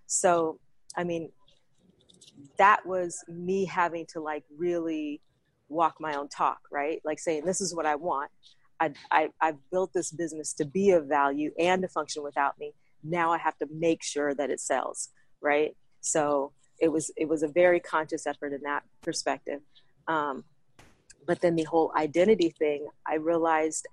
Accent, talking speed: American, 170 wpm